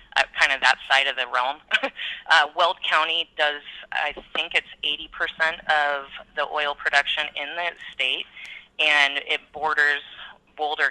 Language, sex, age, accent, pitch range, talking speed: English, female, 30-49, American, 135-160 Hz, 150 wpm